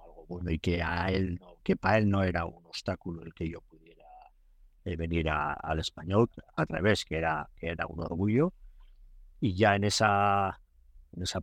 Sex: male